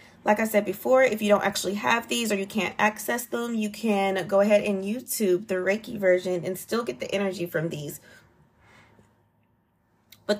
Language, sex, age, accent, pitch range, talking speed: English, female, 20-39, American, 180-215 Hz, 185 wpm